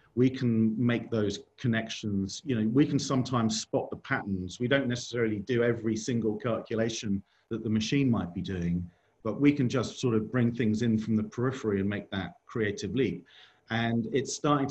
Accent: British